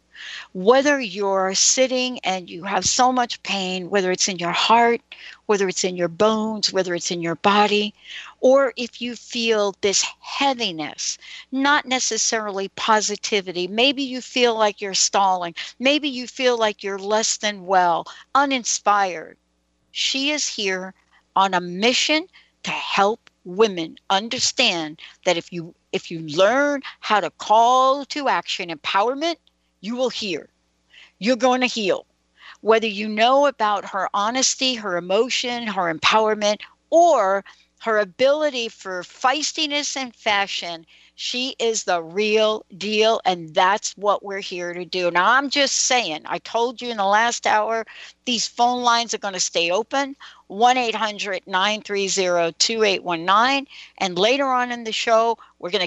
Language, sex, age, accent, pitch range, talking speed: English, female, 60-79, American, 185-245 Hz, 145 wpm